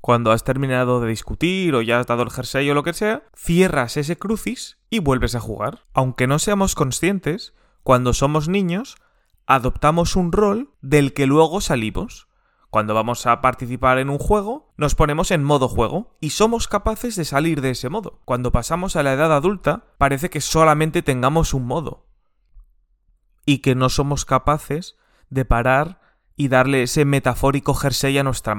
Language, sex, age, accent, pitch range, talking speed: Spanish, male, 20-39, Spanish, 125-170 Hz, 170 wpm